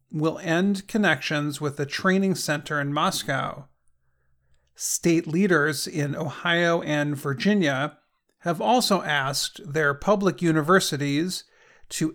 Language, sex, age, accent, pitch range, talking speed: English, male, 40-59, American, 145-190 Hz, 110 wpm